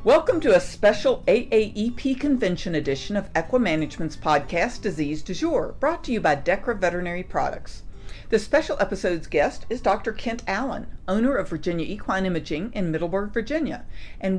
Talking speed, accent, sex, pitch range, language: 160 wpm, American, female, 175-250 Hz, English